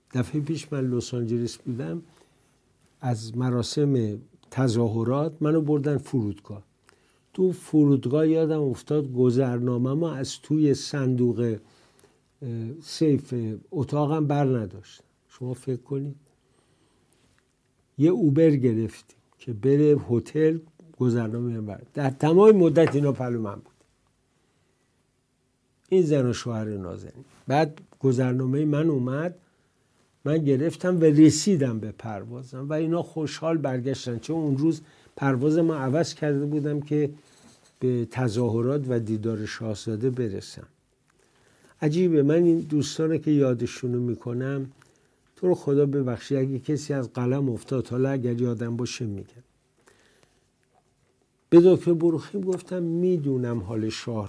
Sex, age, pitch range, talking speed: male, 60-79, 120-150 Hz, 115 wpm